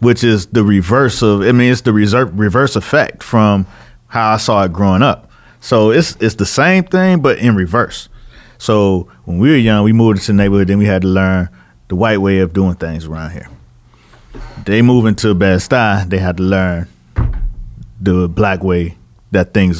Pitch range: 95-115 Hz